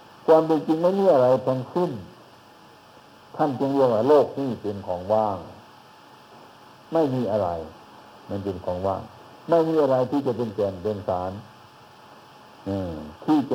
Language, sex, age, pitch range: Thai, male, 60-79, 105-135 Hz